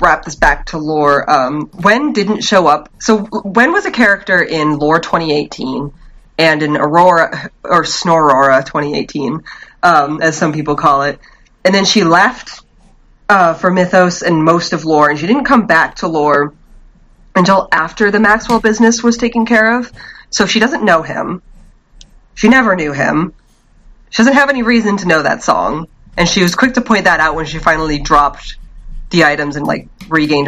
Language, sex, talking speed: English, female, 180 wpm